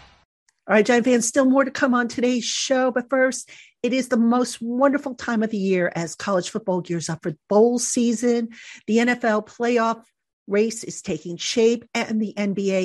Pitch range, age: 180-240 Hz, 50-69